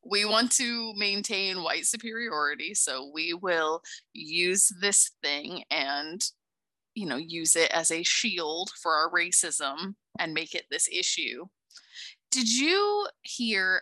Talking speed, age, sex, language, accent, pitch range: 135 wpm, 20-39, female, English, American, 170-225 Hz